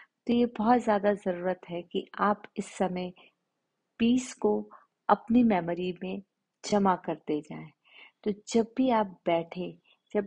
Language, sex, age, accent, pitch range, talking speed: Hindi, female, 50-69, native, 180-230 Hz, 135 wpm